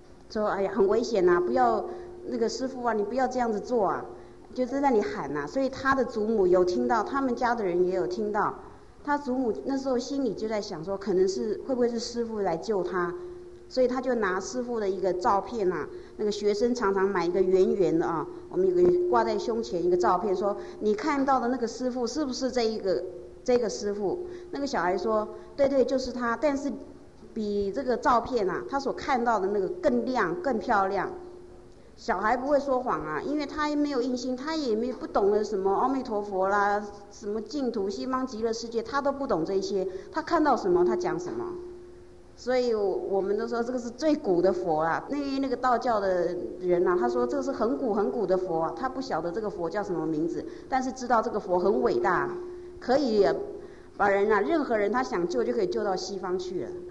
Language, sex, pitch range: English, female, 195-280 Hz